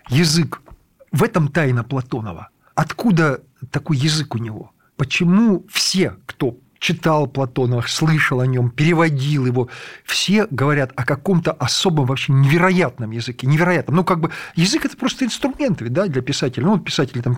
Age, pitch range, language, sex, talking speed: 50-69, 135-175 Hz, Russian, male, 150 wpm